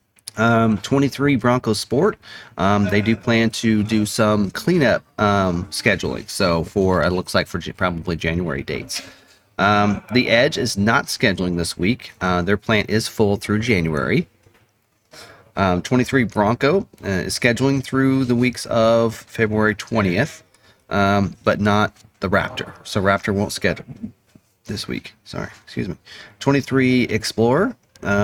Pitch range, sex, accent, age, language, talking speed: 95-115 Hz, male, American, 30-49, English, 140 wpm